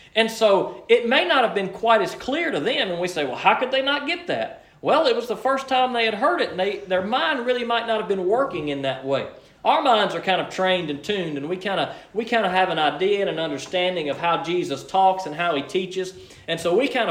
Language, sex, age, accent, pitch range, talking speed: English, male, 40-59, American, 150-215 Hz, 275 wpm